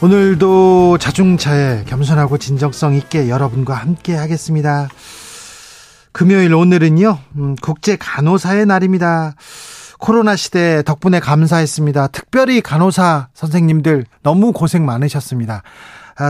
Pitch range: 140-185 Hz